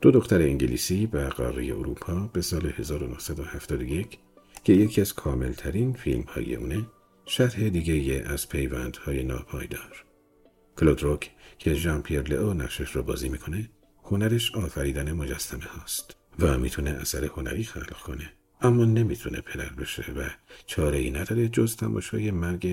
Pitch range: 70-100 Hz